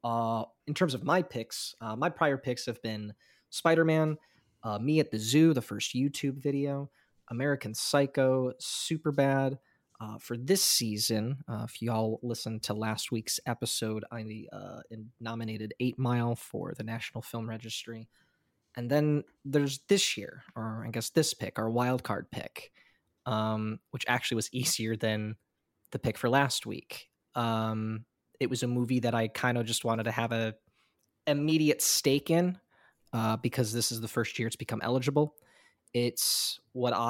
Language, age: English, 20-39